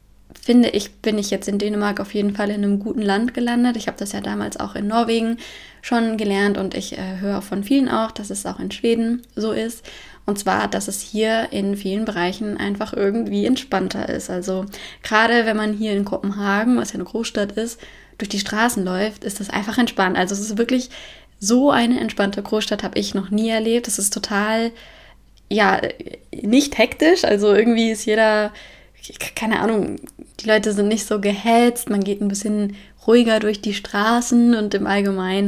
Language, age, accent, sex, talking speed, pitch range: German, 20-39, German, female, 190 wpm, 200-225 Hz